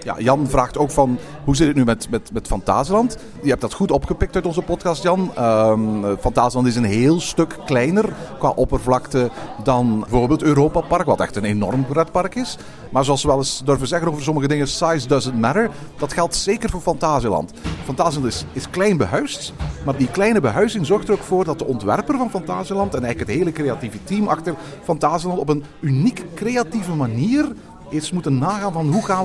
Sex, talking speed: male, 195 wpm